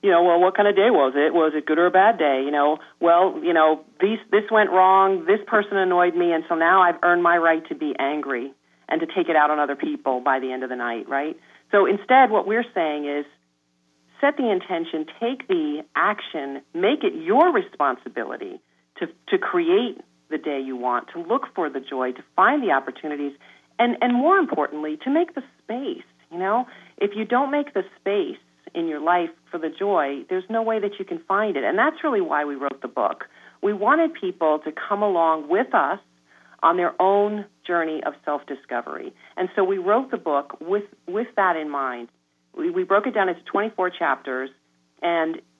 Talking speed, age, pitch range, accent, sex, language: 205 wpm, 40-59, 145-220 Hz, American, female, English